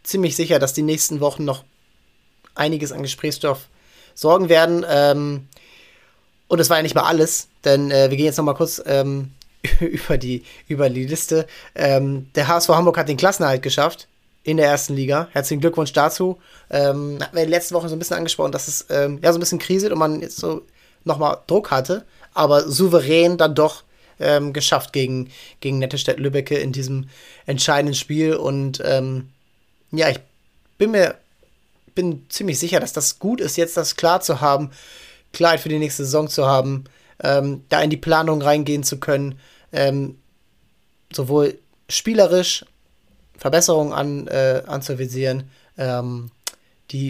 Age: 20-39